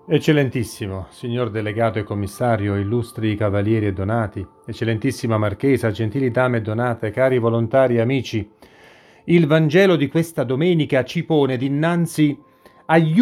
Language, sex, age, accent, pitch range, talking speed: Italian, male, 40-59, native, 115-180 Hz, 125 wpm